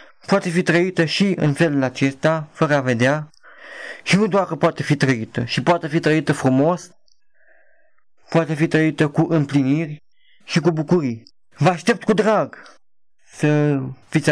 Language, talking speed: Romanian, 150 wpm